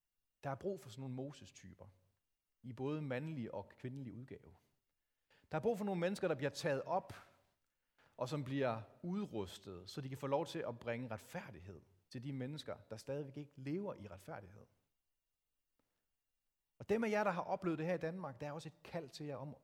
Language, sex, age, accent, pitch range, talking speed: Danish, male, 40-59, native, 120-165 Hz, 195 wpm